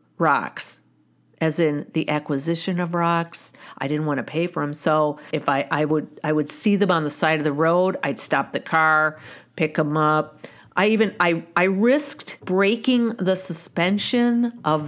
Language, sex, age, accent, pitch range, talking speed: English, female, 50-69, American, 155-210 Hz, 180 wpm